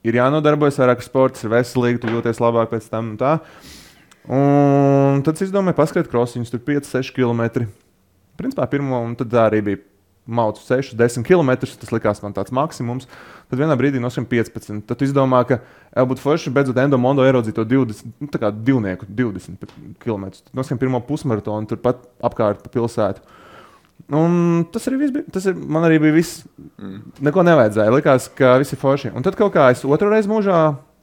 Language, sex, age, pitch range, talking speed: English, male, 20-39, 115-145 Hz, 160 wpm